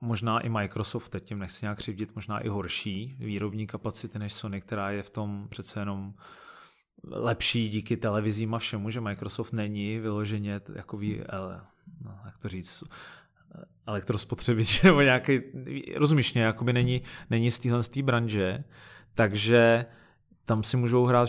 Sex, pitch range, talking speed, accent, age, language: male, 105-120 Hz, 125 wpm, native, 30-49, Czech